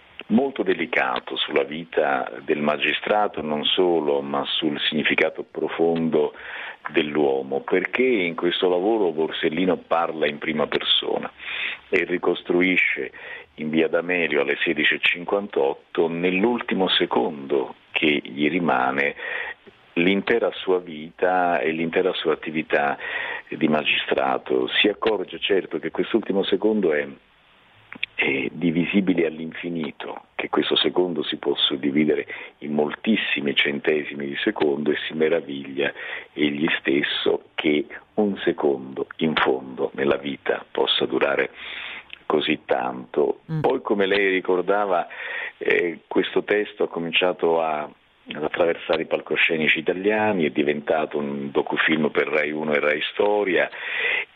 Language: Italian